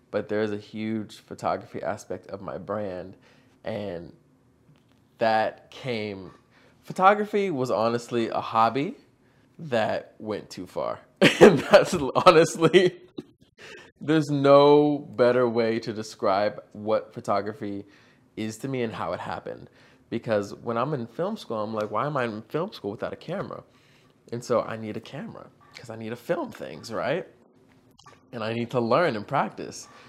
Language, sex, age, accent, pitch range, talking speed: English, male, 20-39, American, 110-140 Hz, 150 wpm